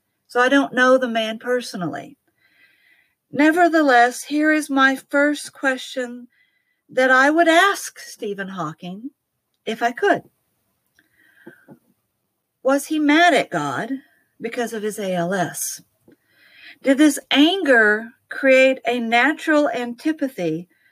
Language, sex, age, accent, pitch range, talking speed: English, female, 50-69, American, 215-270 Hz, 110 wpm